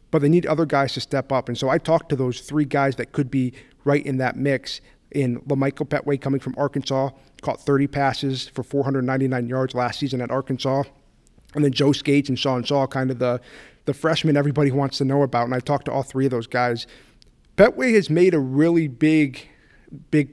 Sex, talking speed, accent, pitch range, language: male, 215 wpm, American, 130-145 Hz, English